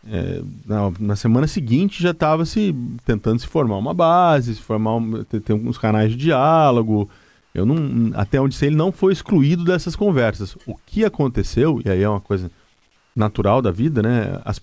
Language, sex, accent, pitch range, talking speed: Portuguese, male, Brazilian, 110-150 Hz, 190 wpm